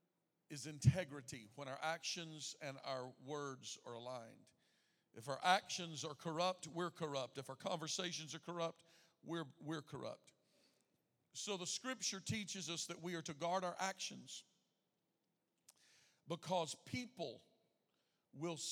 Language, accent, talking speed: English, American, 130 wpm